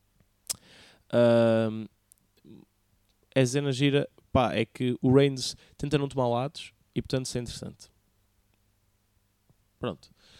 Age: 20-39